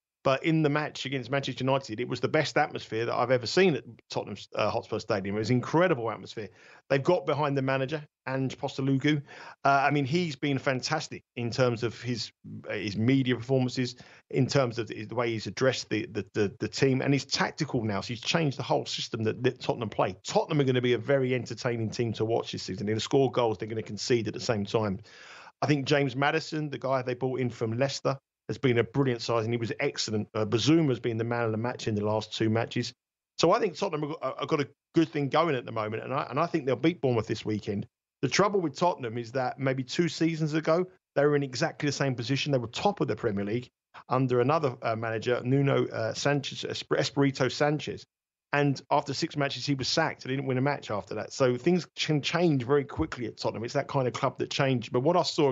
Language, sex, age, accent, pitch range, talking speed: English, male, 40-59, British, 115-145 Hz, 240 wpm